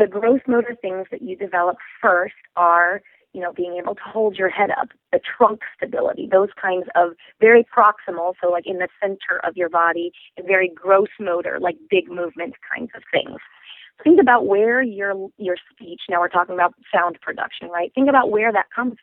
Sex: female